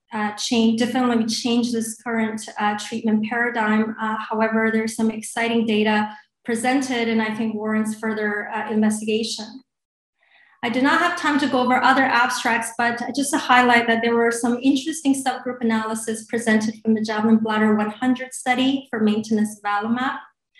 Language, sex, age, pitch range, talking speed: English, female, 20-39, 225-250 Hz, 155 wpm